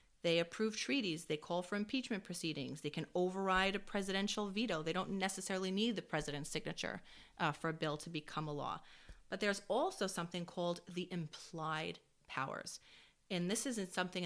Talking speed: 175 wpm